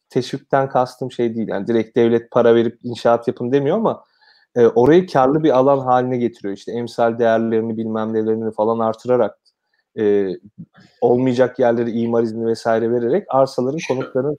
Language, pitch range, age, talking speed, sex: Turkish, 115-140 Hz, 40-59, 150 wpm, male